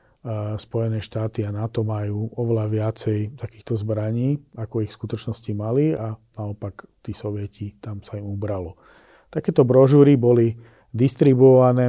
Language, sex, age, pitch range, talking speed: Slovak, male, 40-59, 105-120 Hz, 130 wpm